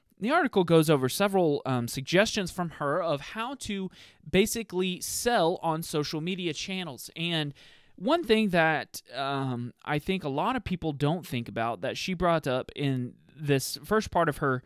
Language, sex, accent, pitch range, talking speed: English, male, American, 145-205 Hz, 170 wpm